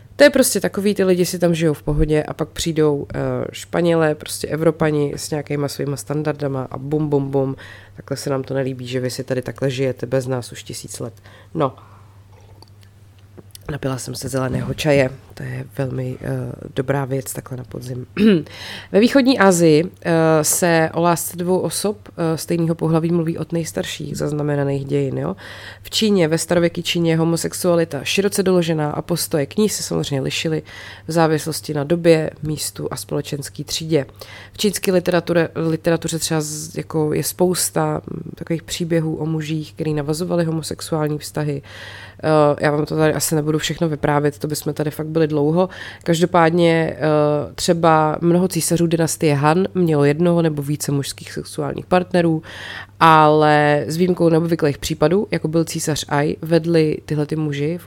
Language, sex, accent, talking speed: Czech, female, native, 160 wpm